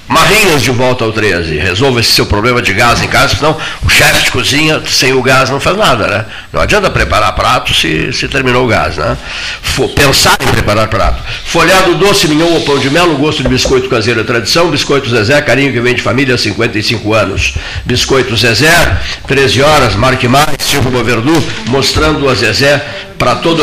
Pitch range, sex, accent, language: 115-140 Hz, male, Brazilian, Portuguese